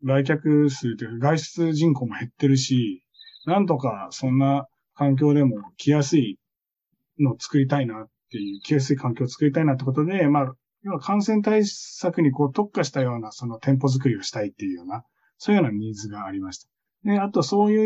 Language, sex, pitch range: Japanese, male, 120-160 Hz